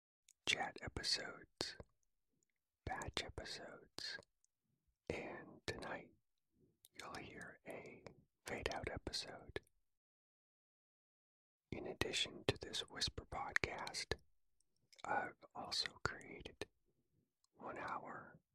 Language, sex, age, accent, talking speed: English, male, 40-59, American, 70 wpm